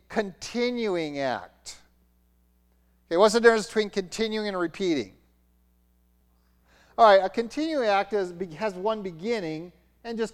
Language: English